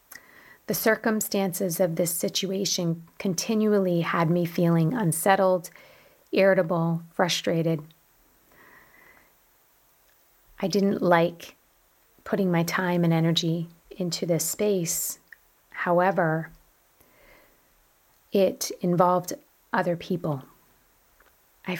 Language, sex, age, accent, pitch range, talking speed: English, female, 30-49, American, 165-195 Hz, 80 wpm